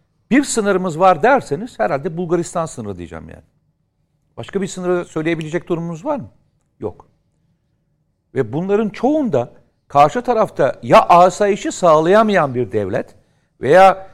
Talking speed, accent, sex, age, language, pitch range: 120 wpm, native, male, 60-79, Turkish, 155-215 Hz